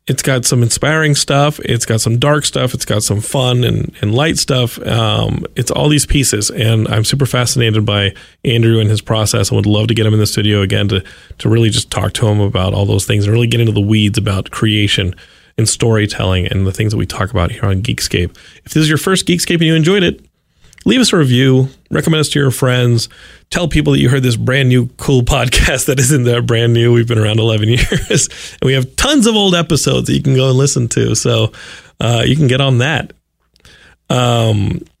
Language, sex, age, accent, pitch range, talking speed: English, male, 30-49, American, 110-135 Hz, 230 wpm